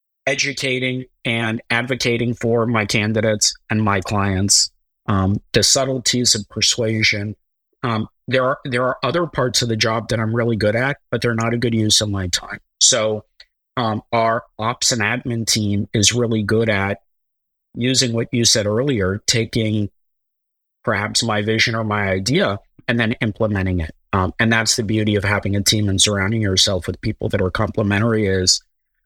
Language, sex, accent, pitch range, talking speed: English, male, American, 100-120 Hz, 170 wpm